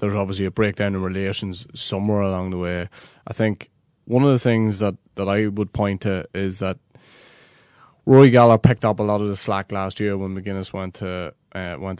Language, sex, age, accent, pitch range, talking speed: English, male, 20-39, Irish, 95-110 Hz, 205 wpm